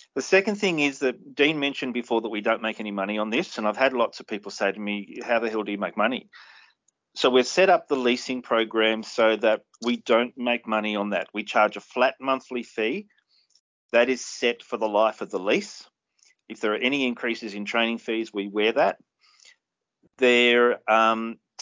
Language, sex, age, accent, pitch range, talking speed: English, male, 40-59, Australian, 110-130 Hz, 205 wpm